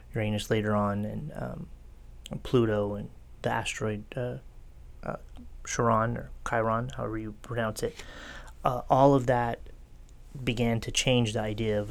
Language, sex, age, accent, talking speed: English, male, 30-49, American, 145 wpm